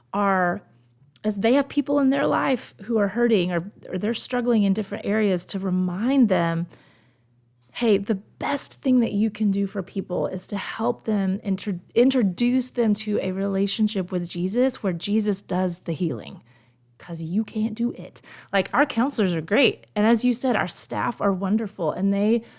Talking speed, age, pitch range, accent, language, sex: 185 wpm, 30-49, 170-215 Hz, American, English, female